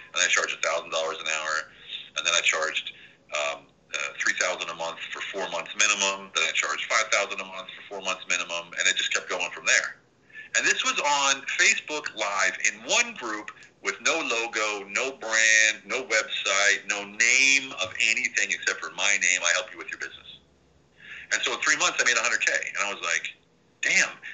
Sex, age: male, 40-59